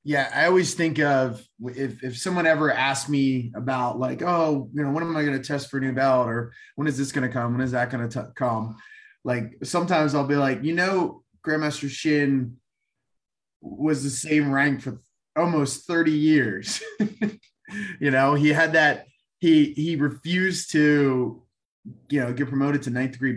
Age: 20-39